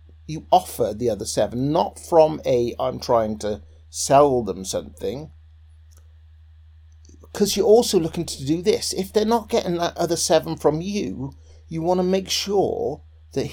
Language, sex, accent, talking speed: English, male, British, 160 wpm